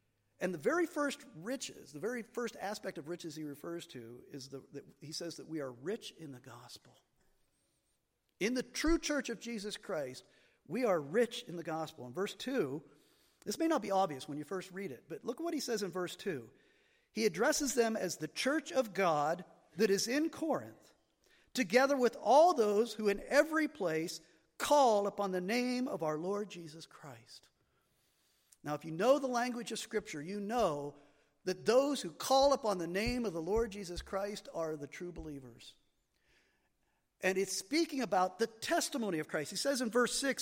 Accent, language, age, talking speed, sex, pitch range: American, English, 50-69, 190 wpm, male, 185-265 Hz